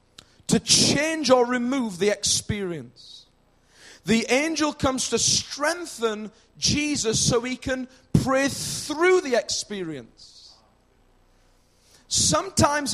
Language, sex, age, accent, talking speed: English, male, 40-59, British, 95 wpm